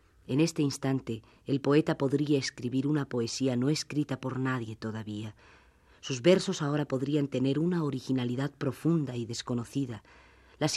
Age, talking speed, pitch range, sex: 40-59, 140 wpm, 115-145 Hz, female